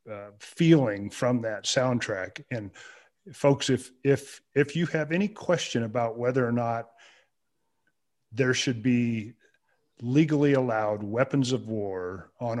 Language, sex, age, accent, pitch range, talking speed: English, male, 40-59, American, 115-140 Hz, 130 wpm